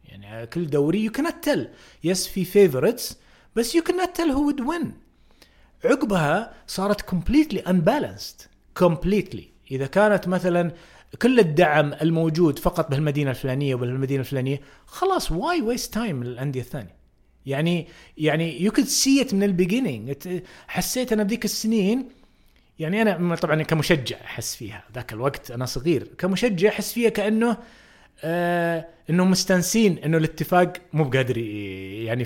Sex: male